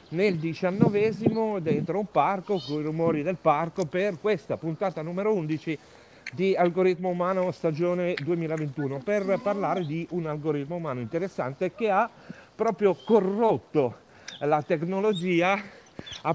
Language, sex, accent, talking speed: Italian, male, native, 125 wpm